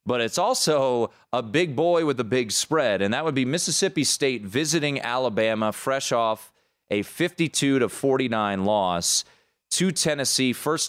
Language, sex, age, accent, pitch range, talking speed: English, male, 30-49, American, 105-135 Hz, 150 wpm